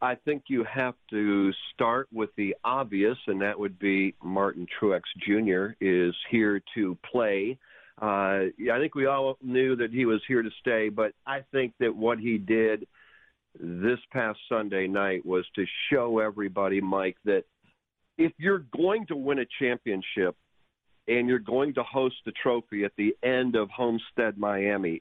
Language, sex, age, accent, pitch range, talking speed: English, male, 50-69, American, 100-135 Hz, 165 wpm